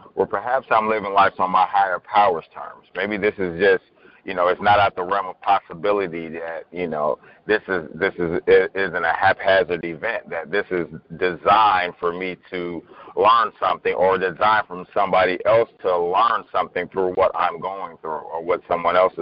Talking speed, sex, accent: 185 wpm, male, American